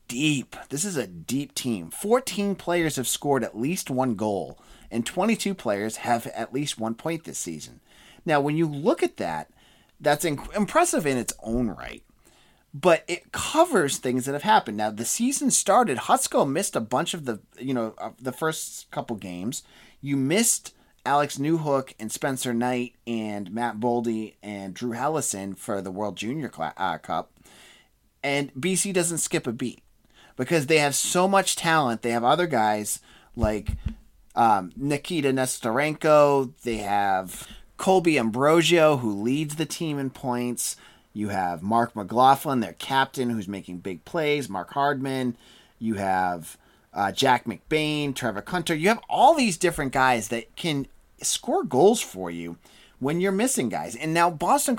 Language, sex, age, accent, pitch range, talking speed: English, male, 30-49, American, 115-160 Hz, 160 wpm